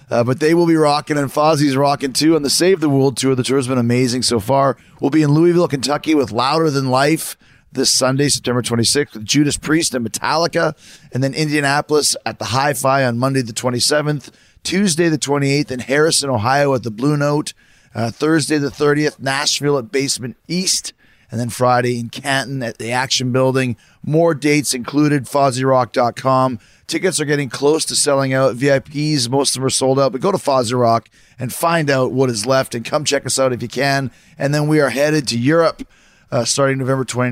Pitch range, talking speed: 125-150 Hz, 200 wpm